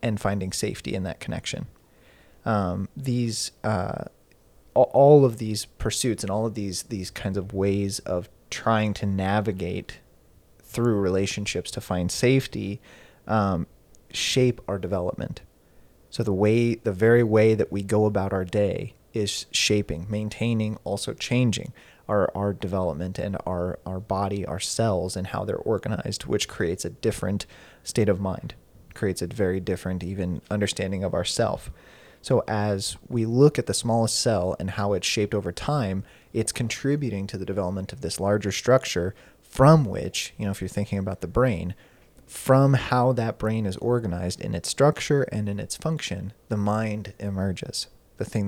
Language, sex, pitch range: English, male, 95-115 Hz